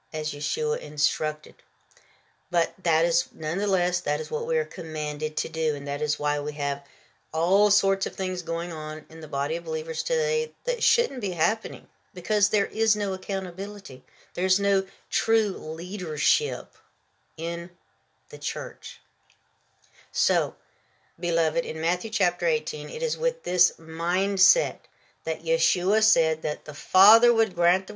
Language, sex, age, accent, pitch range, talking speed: English, female, 50-69, American, 160-215 Hz, 150 wpm